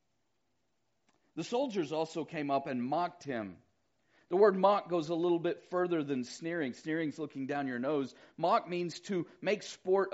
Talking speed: 170 wpm